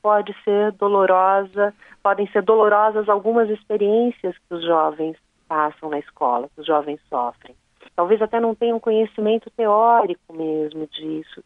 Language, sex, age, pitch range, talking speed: Portuguese, female, 40-59, 170-220 Hz, 135 wpm